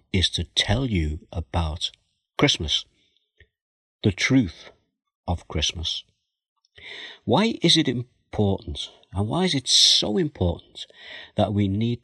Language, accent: English, British